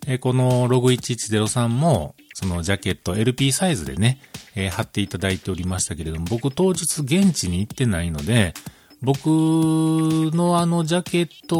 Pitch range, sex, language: 100-150 Hz, male, Japanese